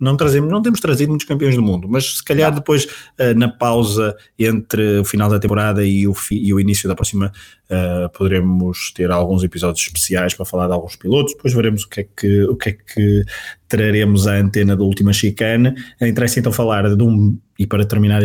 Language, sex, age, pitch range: Portuguese, male, 20-39, 100-120 Hz